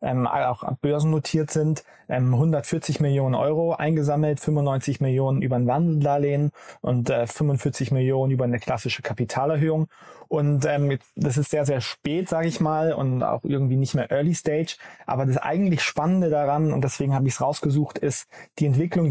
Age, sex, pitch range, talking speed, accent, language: 20-39, male, 135-155 Hz, 170 wpm, German, German